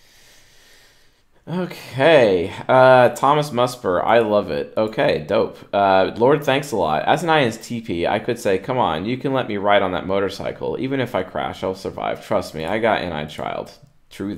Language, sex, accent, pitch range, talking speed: English, male, American, 85-120 Hz, 185 wpm